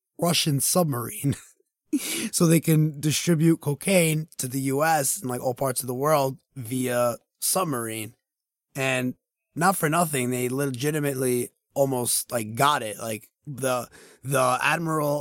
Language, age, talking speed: English, 20-39, 135 wpm